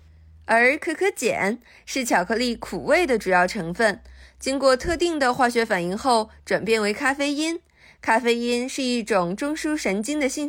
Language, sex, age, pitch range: Chinese, female, 20-39, 220-285 Hz